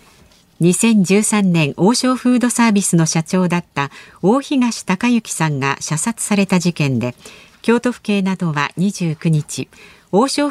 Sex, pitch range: female, 160-230 Hz